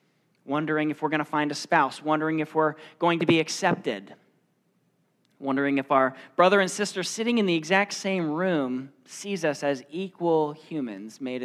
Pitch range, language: 135-170 Hz, English